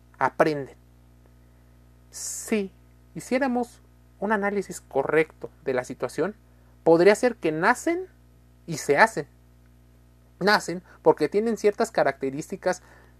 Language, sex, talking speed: Spanish, male, 95 wpm